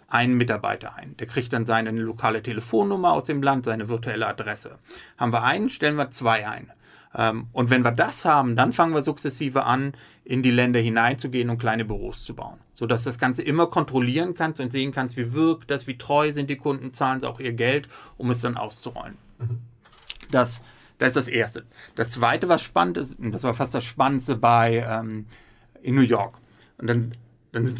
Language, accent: German, German